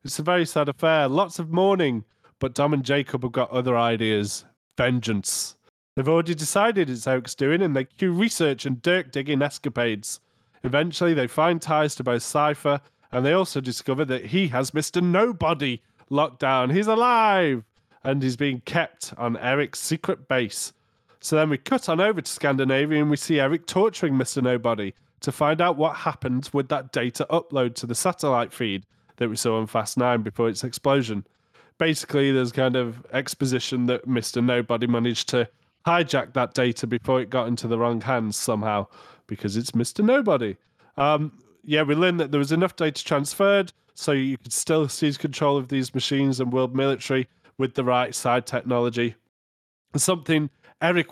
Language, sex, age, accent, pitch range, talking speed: English, male, 30-49, British, 125-155 Hz, 175 wpm